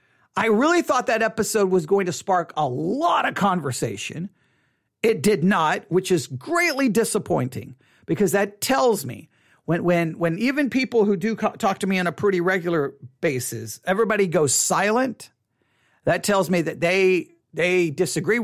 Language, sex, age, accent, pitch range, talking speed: English, male, 40-59, American, 160-225 Hz, 165 wpm